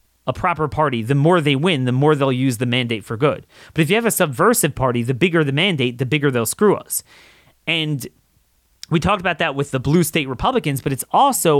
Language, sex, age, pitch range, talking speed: English, male, 30-49, 125-185 Hz, 230 wpm